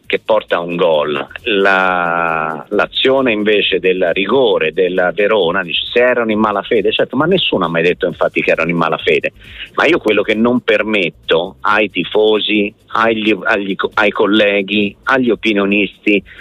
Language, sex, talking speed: Italian, male, 155 wpm